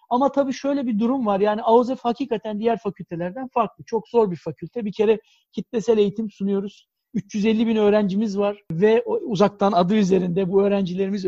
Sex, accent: male, native